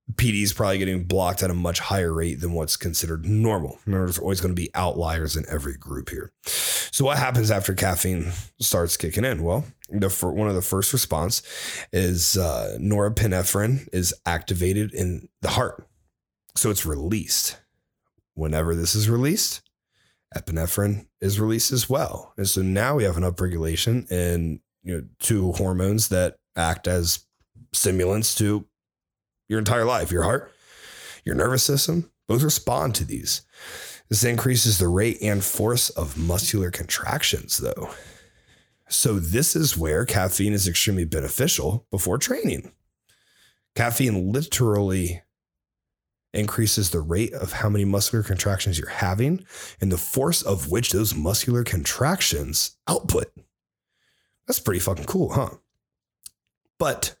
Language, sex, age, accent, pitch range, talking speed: English, male, 30-49, American, 90-110 Hz, 140 wpm